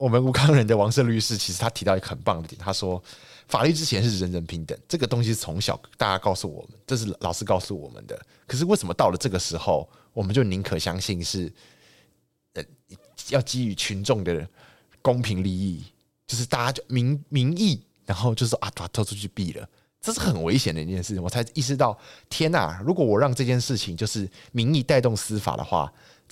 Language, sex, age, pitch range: Chinese, male, 20-39, 95-130 Hz